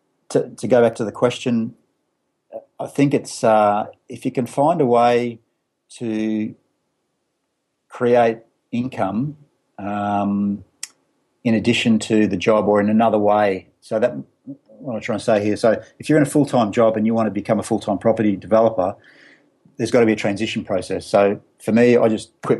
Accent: Australian